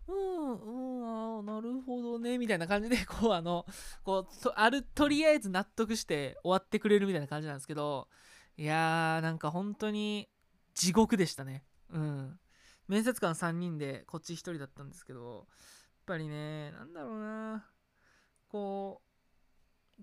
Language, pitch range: Japanese, 165-245 Hz